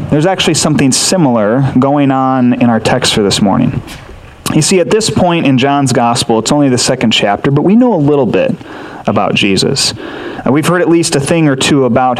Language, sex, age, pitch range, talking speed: English, male, 30-49, 120-155 Hz, 205 wpm